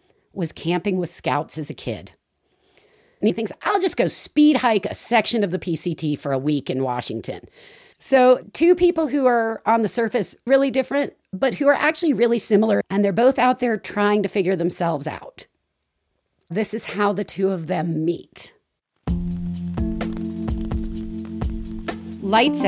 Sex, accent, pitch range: female, American, 165-240 Hz